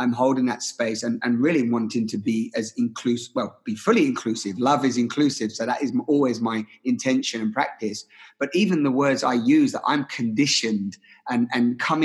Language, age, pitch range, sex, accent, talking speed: English, 30-49, 120-150 Hz, male, British, 195 wpm